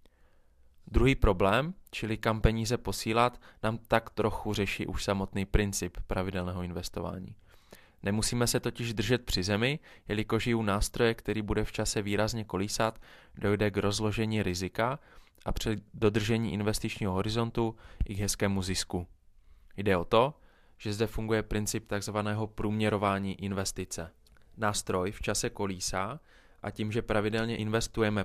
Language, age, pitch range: Czech, 20-39, 95-110 Hz